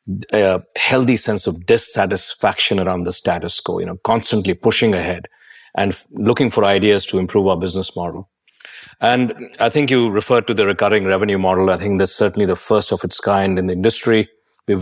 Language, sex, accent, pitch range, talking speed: English, male, Indian, 95-105 Hz, 190 wpm